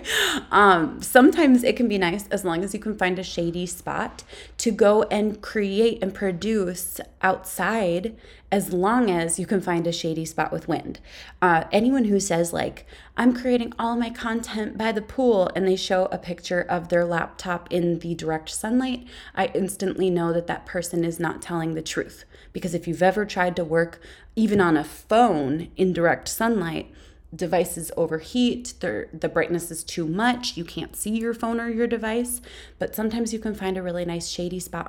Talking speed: 185 wpm